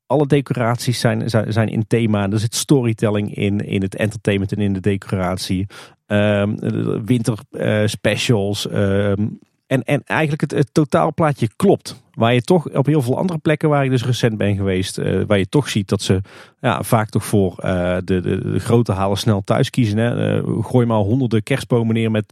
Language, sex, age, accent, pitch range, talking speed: Dutch, male, 40-59, Dutch, 105-125 Hz, 190 wpm